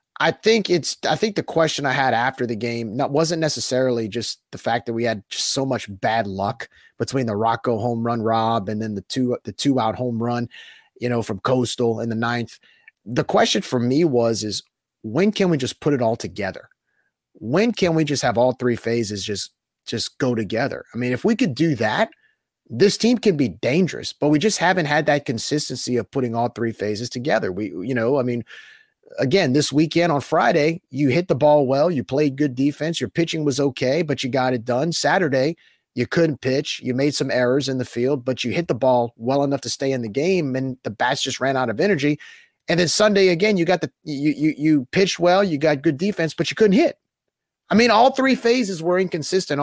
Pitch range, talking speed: 120-170 Hz, 225 wpm